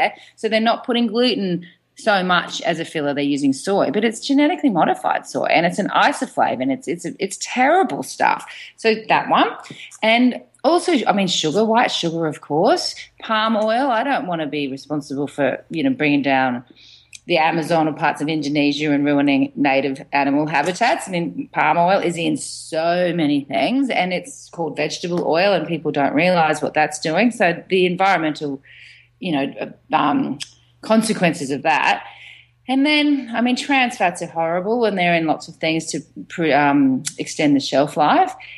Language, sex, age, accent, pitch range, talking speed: English, female, 30-49, Australian, 150-235 Hz, 175 wpm